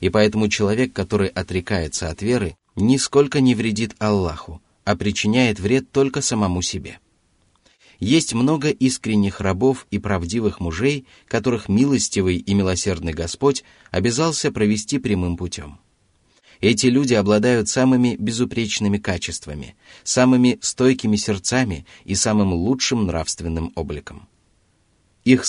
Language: Russian